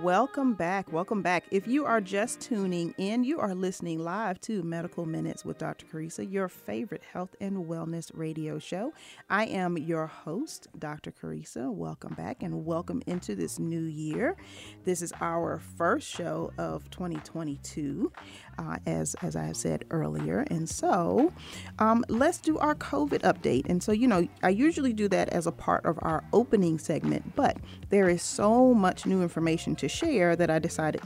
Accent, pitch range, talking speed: American, 155-200 Hz, 175 wpm